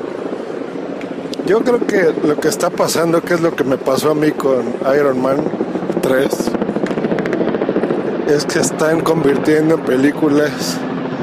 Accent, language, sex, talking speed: Mexican, Spanish, male, 130 wpm